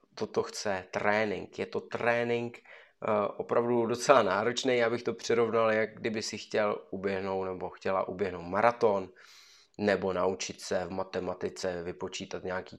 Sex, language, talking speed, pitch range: male, Czech, 140 wpm, 95-115 Hz